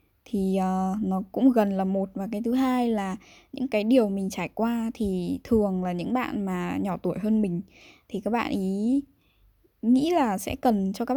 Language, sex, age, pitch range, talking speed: Vietnamese, female, 10-29, 195-240 Hz, 205 wpm